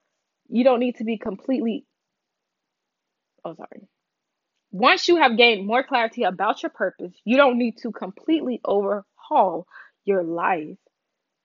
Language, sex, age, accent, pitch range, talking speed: English, female, 20-39, American, 200-255 Hz, 130 wpm